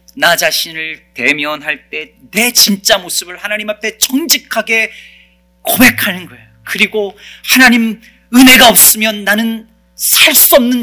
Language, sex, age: Korean, male, 40-59